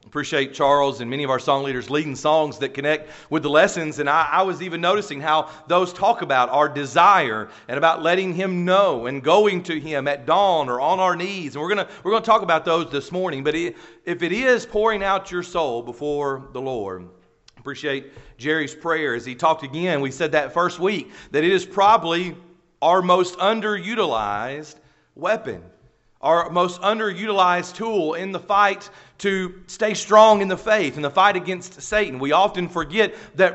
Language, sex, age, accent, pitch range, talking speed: English, male, 40-59, American, 145-195 Hz, 190 wpm